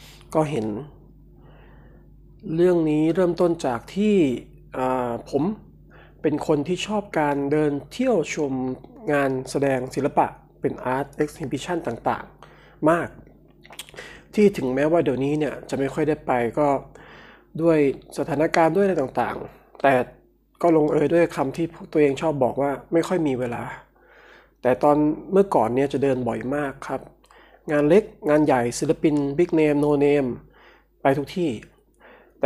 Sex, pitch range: male, 135-165 Hz